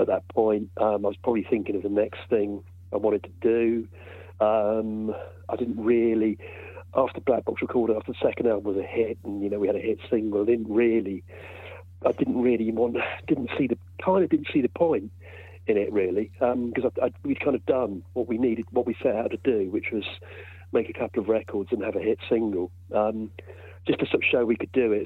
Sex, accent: male, British